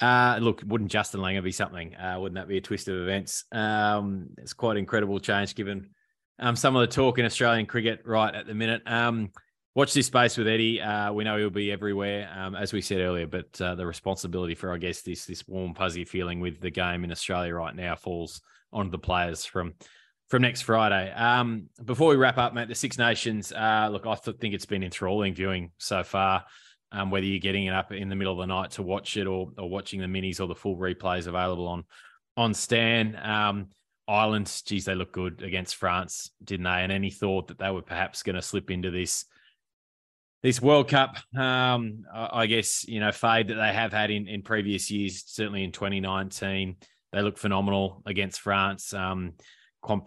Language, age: English, 20-39